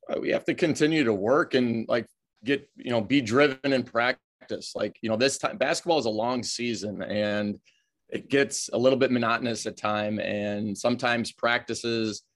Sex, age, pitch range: male, 30-49, 110-125 Hz